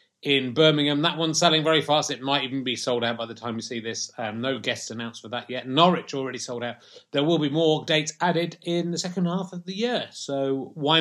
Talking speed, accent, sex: 245 wpm, British, male